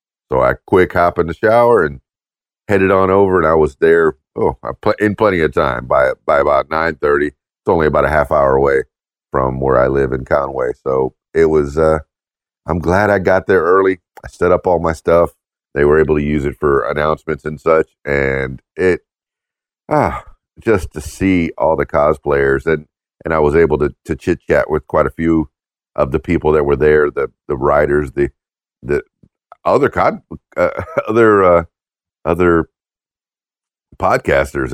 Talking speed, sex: 185 wpm, male